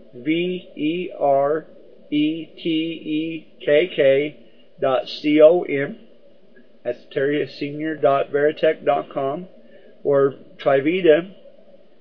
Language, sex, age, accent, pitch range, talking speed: English, male, 50-69, American, 135-170 Hz, 85 wpm